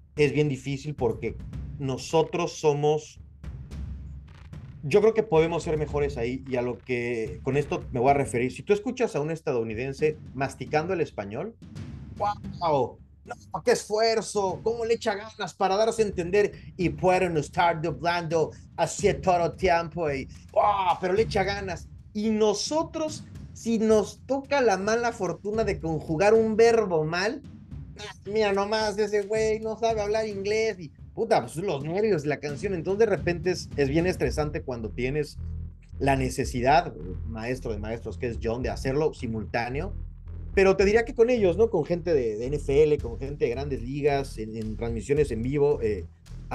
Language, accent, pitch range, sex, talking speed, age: Spanish, Mexican, 125-205 Hz, male, 170 wpm, 30-49